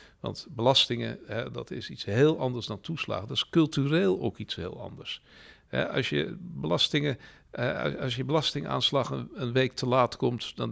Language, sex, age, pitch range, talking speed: Dutch, male, 50-69, 110-160 Hz, 145 wpm